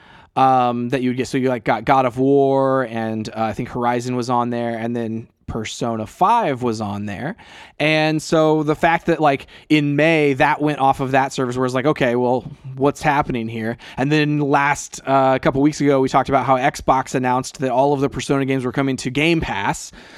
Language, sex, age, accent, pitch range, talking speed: English, male, 20-39, American, 120-155 Hz, 220 wpm